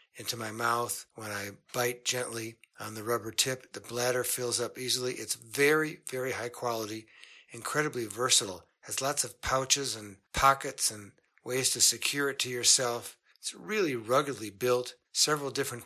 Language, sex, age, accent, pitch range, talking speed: English, male, 60-79, American, 115-135 Hz, 160 wpm